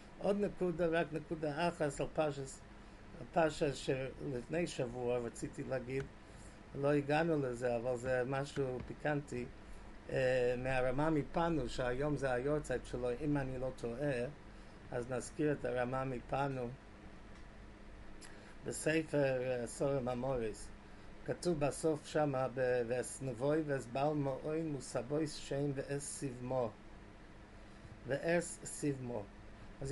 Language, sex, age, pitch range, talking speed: English, male, 50-69, 115-150 Hz, 110 wpm